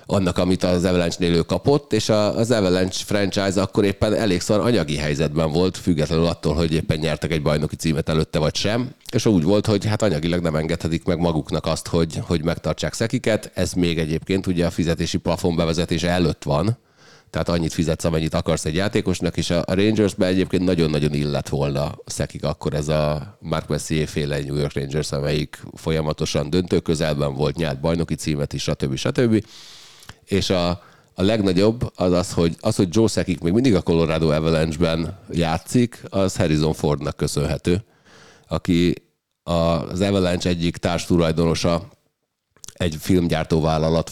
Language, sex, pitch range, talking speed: Hungarian, male, 80-95 Hz, 155 wpm